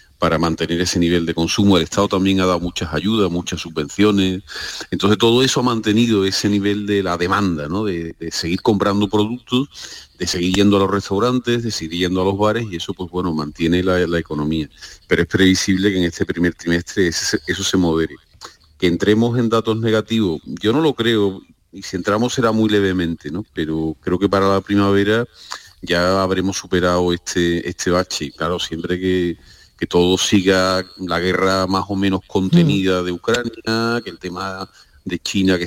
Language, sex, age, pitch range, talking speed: Spanish, male, 40-59, 90-110 Hz, 190 wpm